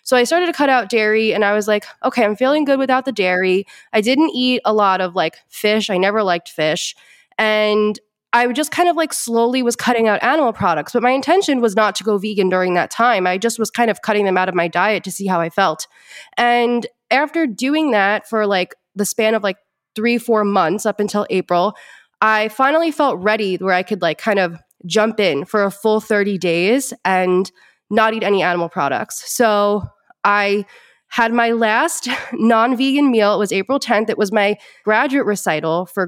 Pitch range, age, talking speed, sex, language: 195-240 Hz, 20-39, 210 wpm, female, English